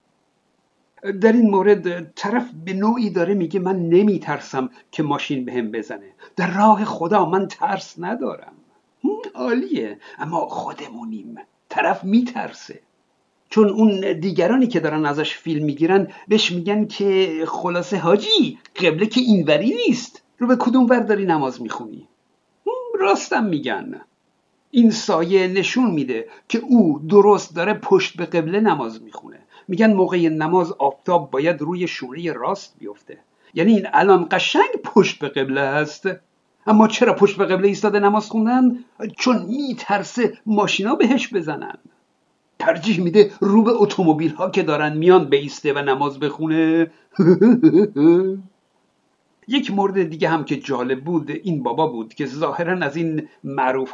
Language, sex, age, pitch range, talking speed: Persian, male, 60-79, 160-215 Hz, 140 wpm